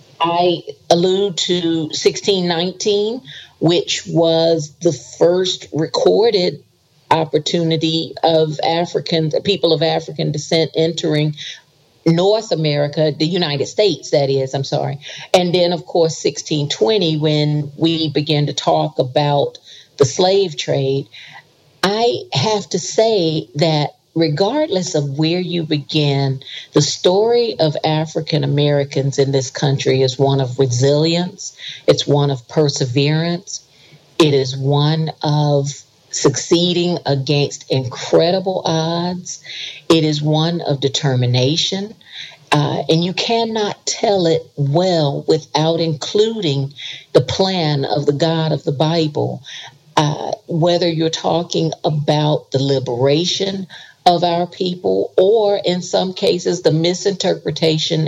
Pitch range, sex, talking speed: 145-175 Hz, female, 115 wpm